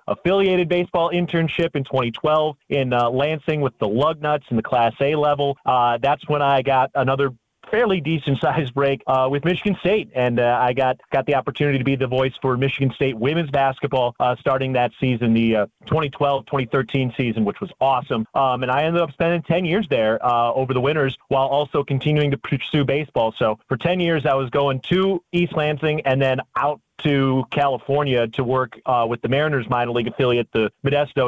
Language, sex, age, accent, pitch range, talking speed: English, male, 30-49, American, 130-150 Hz, 200 wpm